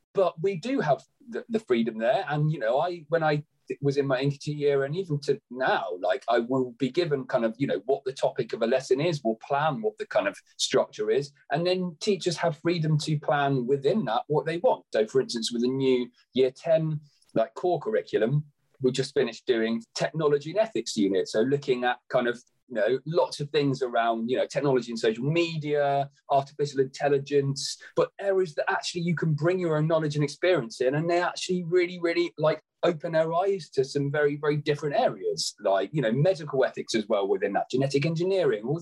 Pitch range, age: 135-180 Hz, 30-49